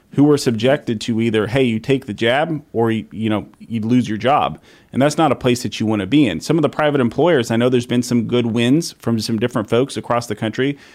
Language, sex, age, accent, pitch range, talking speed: English, male, 30-49, American, 110-125 Hz, 260 wpm